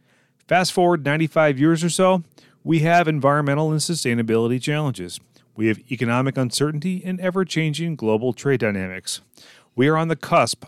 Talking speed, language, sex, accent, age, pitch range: 145 wpm, English, male, American, 30-49, 115-160 Hz